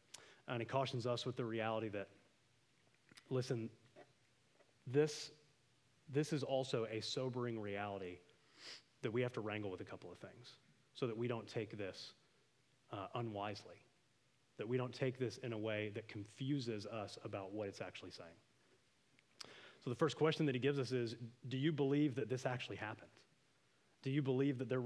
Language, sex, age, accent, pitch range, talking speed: English, male, 30-49, American, 115-145 Hz, 170 wpm